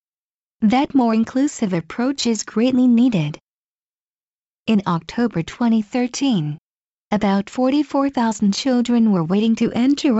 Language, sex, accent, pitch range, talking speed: English, female, American, 195-250 Hz, 100 wpm